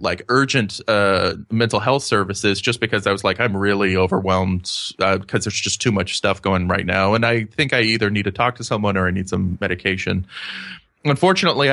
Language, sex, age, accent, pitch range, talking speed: English, male, 30-49, American, 95-120 Hz, 205 wpm